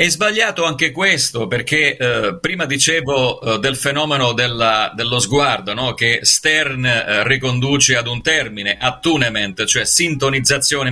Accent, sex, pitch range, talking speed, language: native, male, 125-155 Hz, 135 wpm, Italian